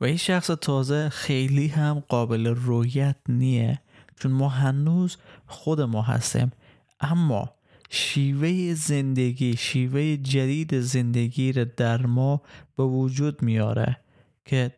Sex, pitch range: male, 120-140 Hz